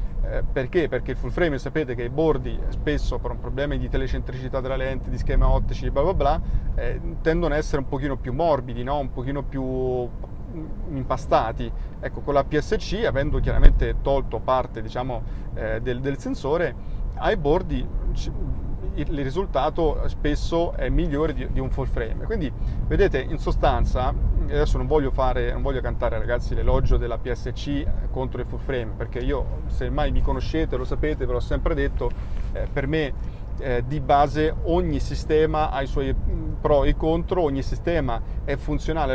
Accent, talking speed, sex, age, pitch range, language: native, 170 wpm, male, 30-49, 125-150 Hz, Italian